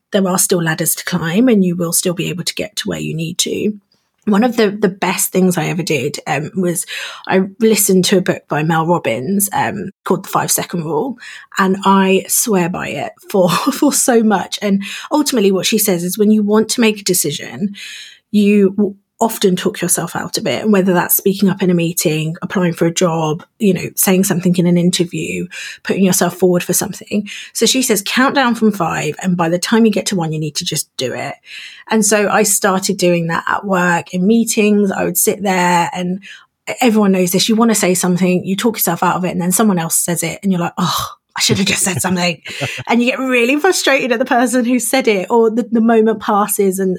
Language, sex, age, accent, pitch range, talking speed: English, female, 30-49, British, 180-220 Hz, 230 wpm